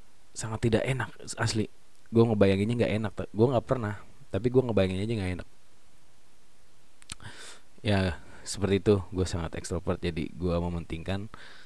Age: 20-39